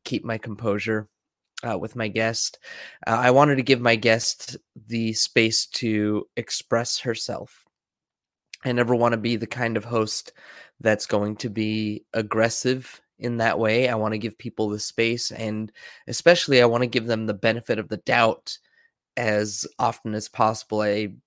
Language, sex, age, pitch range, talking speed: English, male, 20-39, 110-125 Hz, 170 wpm